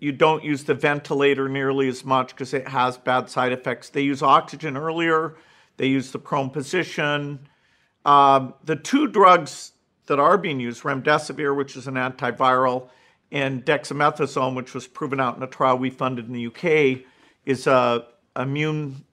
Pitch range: 130-155 Hz